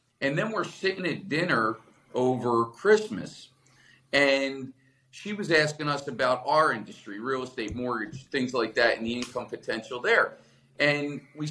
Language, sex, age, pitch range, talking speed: English, male, 40-59, 115-150 Hz, 150 wpm